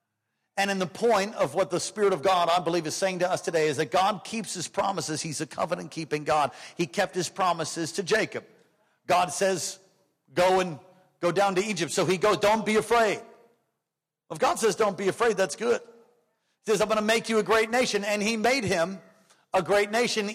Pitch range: 205-255 Hz